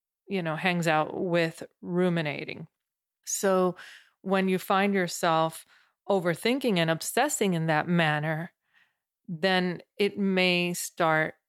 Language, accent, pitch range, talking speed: English, American, 165-195 Hz, 110 wpm